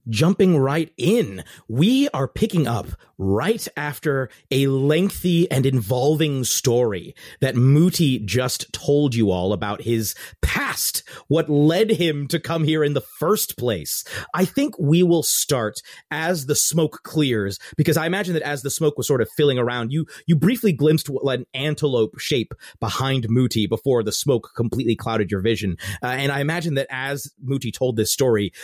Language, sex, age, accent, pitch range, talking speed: English, male, 30-49, American, 115-160 Hz, 170 wpm